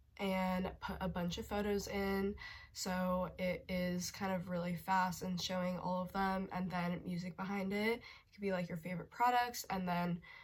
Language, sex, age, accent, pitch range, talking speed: English, female, 20-39, American, 175-195 Hz, 190 wpm